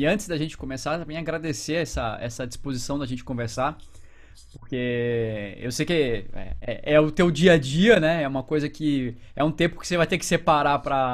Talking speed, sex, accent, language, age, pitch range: 210 wpm, male, Brazilian, English, 20-39, 125-170 Hz